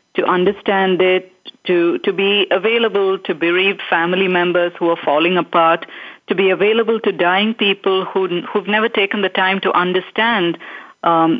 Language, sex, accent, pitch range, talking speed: English, female, Indian, 170-210 Hz, 160 wpm